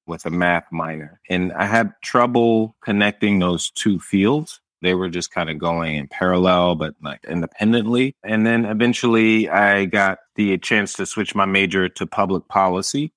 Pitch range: 85-105 Hz